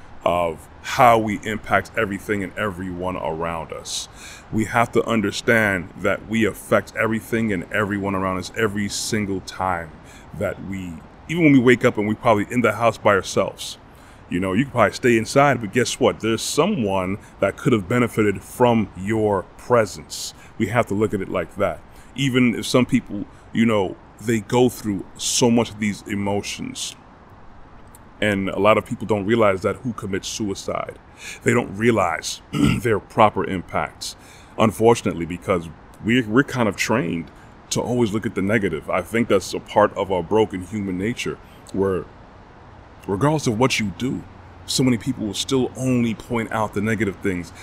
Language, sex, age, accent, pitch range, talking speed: English, male, 30-49, American, 95-120 Hz, 175 wpm